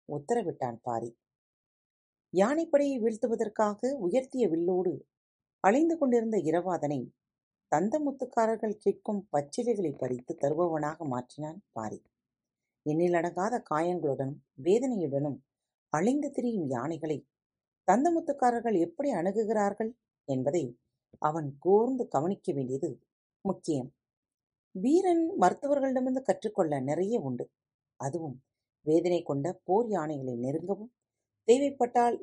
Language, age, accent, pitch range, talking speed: Tamil, 40-59, native, 135-225 Hz, 85 wpm